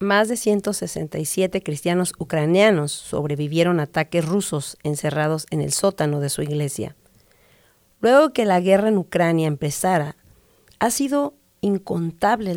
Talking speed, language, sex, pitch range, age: 125 wpm, English, female, 160-205 Hz, 40-59